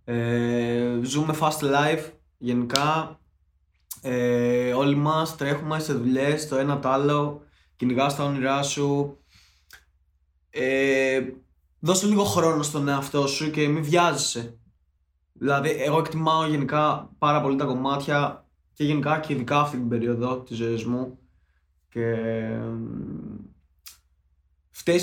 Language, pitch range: Greek, 120-140 Hz